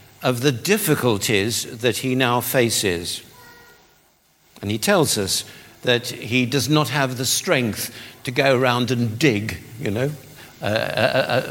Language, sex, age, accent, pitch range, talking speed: English, male, 60-79, British, 115-145 Hz, 135 wpm